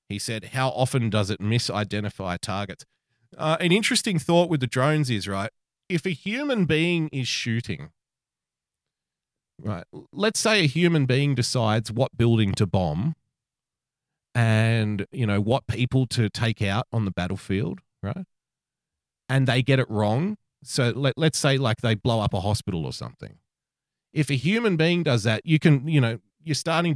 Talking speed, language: 165 wpm, English